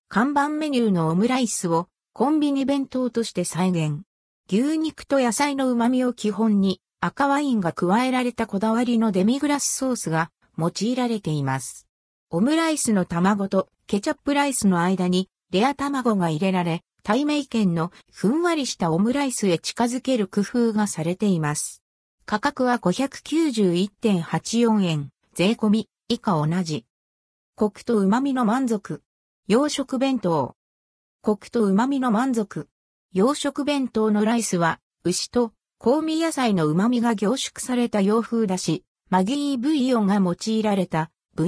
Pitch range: 175-255 Hz